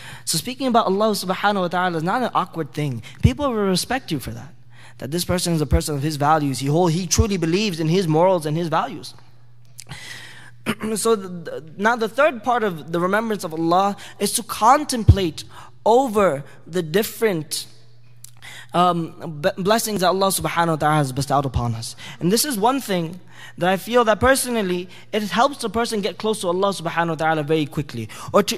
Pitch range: 135-210 Hz